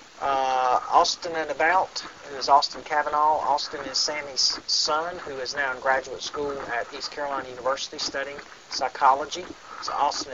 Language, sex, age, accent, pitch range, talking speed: English, male, 40-59, American, 140-160 Hz, 150 wpm